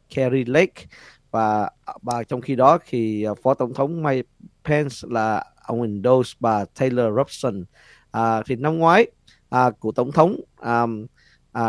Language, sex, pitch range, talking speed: Vietnamese, male, 110-135 Hz, 150 wpm